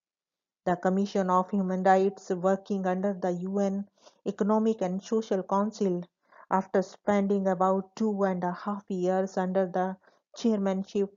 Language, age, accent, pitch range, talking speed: English, 50-69, Indian, 185-210 Hz, 130 wpm